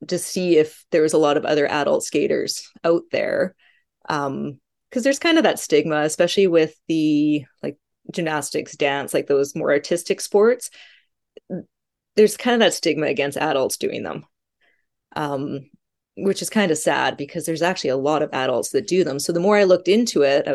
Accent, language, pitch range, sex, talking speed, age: American, English, 150-205 Hz, female, 185 wpm, 20-39